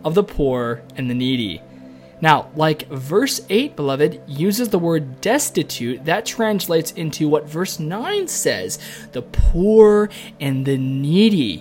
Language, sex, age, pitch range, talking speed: English, male, 20-39, 125-160 Hz, 140 wpm